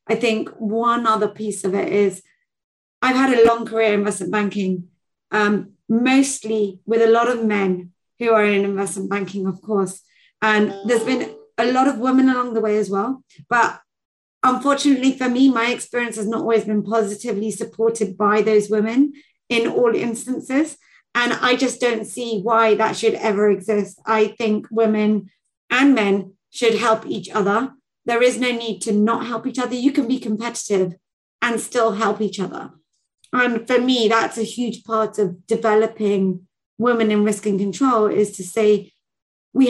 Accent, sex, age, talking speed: British, female, 30-49, 175 wpm